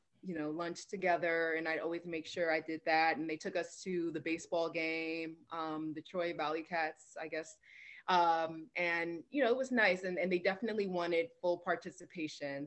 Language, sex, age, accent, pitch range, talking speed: English, female, 20-39, American, 165-215 Hz, 195 wpm